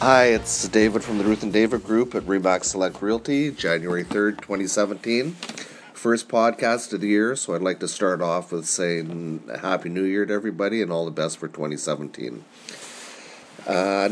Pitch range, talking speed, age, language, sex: 85-105 Hz, 170 wpm, 30-49, English, male